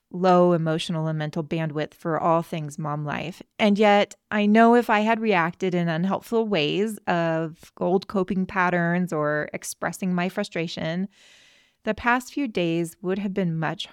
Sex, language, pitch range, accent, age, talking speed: female, English, 170-220 Hz, American, 20-39, 160 wpm